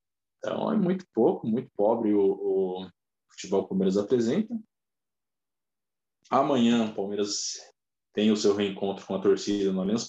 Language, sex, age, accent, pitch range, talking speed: Portuguese, male, 20-39, Brazilian, 100-115 Hz, 150 wpm